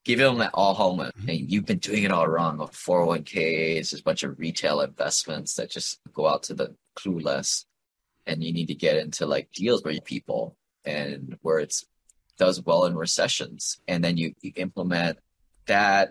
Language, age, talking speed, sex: English, 30-49, 185 wpm, male